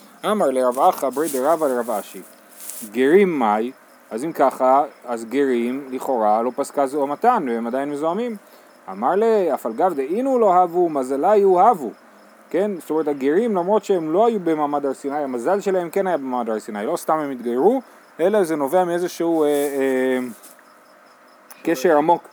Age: 30-49